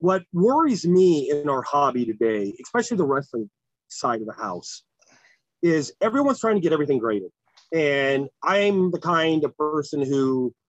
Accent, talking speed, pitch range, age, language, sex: American, 155 wpm, 135-185 Hz, 30-49, English, male